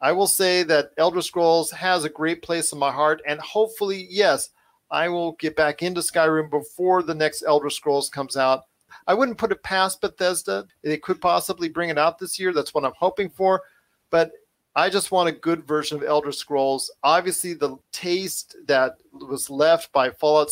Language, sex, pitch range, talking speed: English, male, 140-175 Hz, 195 wpm